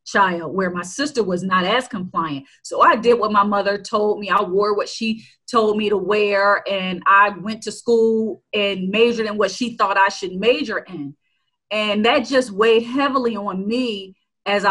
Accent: American